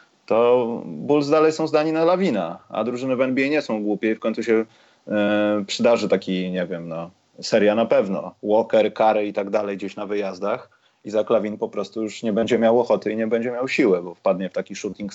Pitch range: 105-130 Hz